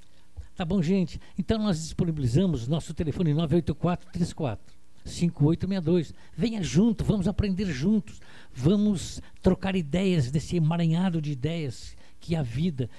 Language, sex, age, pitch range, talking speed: Portuguese, male, 60-79, 115-170 Hz, 120 wpm